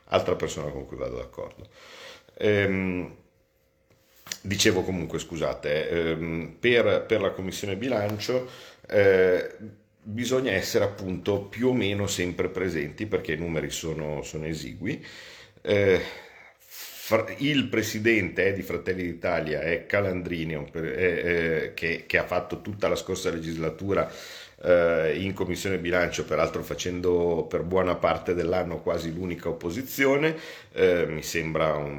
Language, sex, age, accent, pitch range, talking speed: Italian, male, 50-69, native, 80-130 Hz, 125 wpm